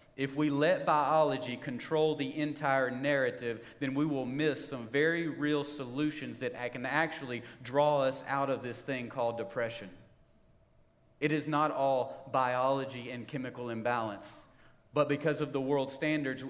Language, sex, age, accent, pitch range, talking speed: English, male, 40-59, American, 125-150 Hz, 150 wpm